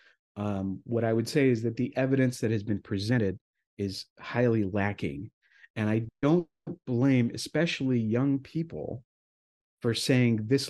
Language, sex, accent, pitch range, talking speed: English, male, American, 100-135 Hz, 145 wpm